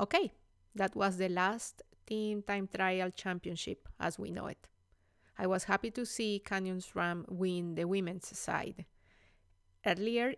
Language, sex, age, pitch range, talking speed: English, female, 30-49, 175-210 Hz, 145 wpm